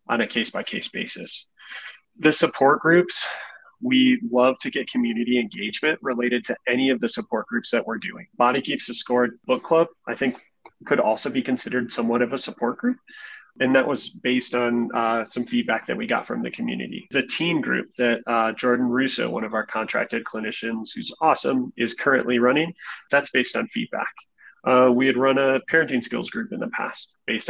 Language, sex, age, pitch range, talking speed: English, male, 20-39, 120-185 Hz, 190 wpm